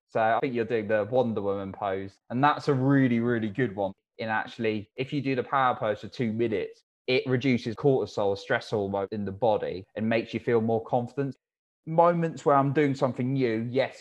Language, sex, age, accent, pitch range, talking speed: English, male, 20-39, British, 100-130 Hz, 205 wpm